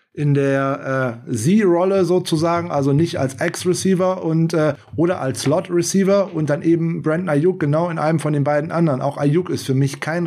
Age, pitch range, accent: 20-39, 135-170 Hz, German